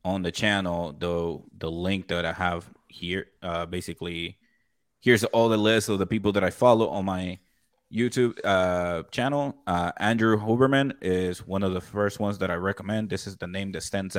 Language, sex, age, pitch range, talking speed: English, male, 20-39, 90-105 Hz, 190 wpm